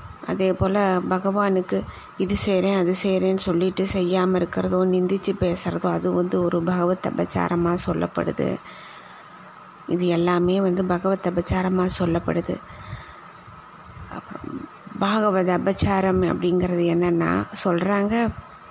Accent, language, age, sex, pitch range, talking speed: native, Tamil, 20-39, female, 175-190 Hz, 85 wpm